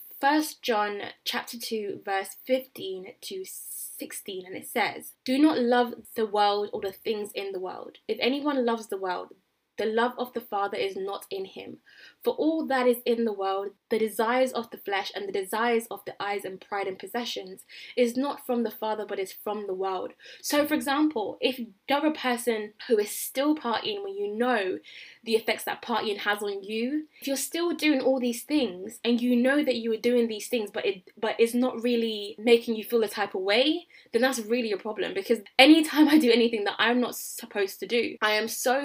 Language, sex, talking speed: English, female, 215 wpm